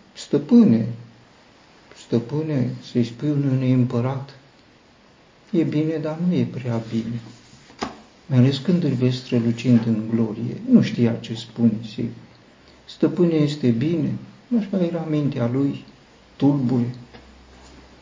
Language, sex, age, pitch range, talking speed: Romanian, male, 50-69, 115-140 Hz, 105 wpm